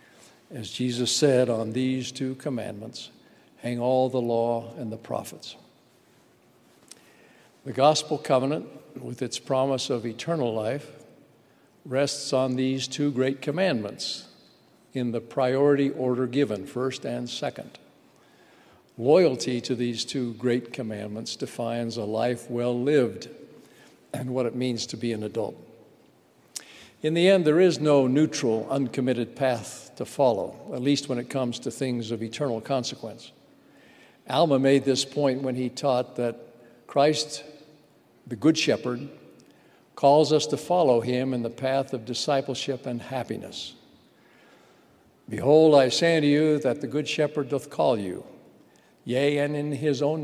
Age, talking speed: 60-79, 140 wpm